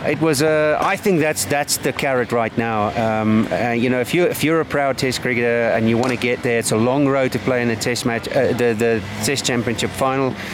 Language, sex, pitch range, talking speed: English, male, 115-140 Hz, 255 wpm